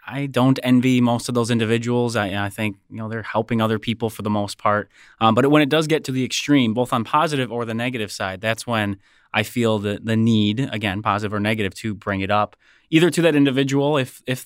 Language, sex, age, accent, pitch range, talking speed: English, male, 20-39, American, 105-125 Hz, 235 wpm